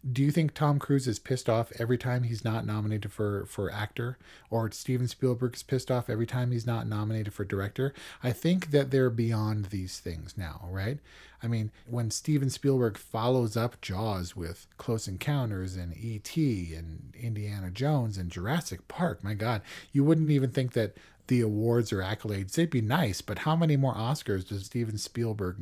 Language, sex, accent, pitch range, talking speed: English, male, American, 105-135 Hz, 185 wpm